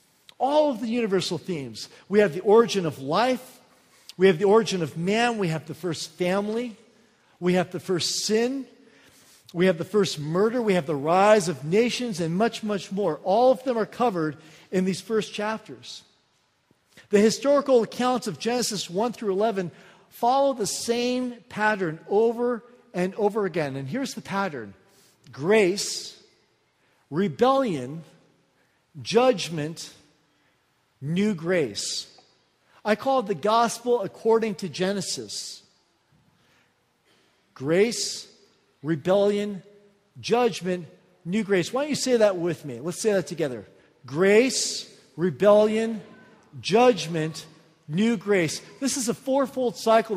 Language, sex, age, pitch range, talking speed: English, male, 50-69, 170-225 Hz, 130 wpm